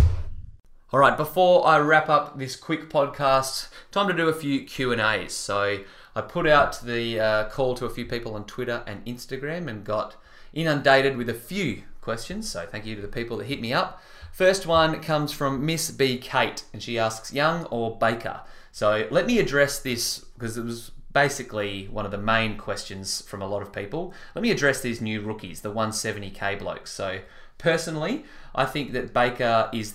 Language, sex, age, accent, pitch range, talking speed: English, male, 20-39, Australian, 110-145 Hz, 190 wpm